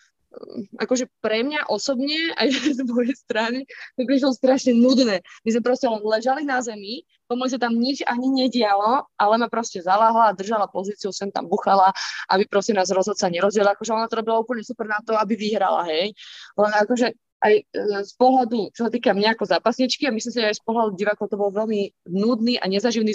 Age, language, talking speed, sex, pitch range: 20-39, Slovak, 190 wpm, female, 205-250 Hz